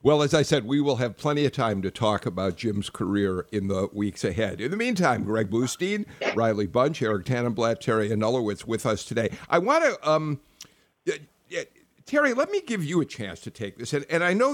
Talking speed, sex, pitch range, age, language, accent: 210 wpm, male, 110-160 Hz, 50-69, English, American